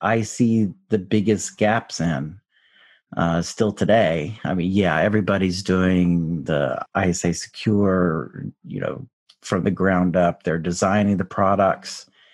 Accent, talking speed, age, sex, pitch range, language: American, 130 wpm, 50-69, male, 90-110 Hz, English